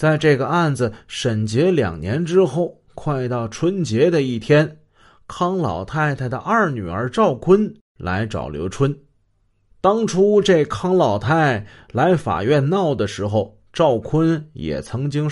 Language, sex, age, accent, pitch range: Chinese, male, 30-49, native, 100-150 Hz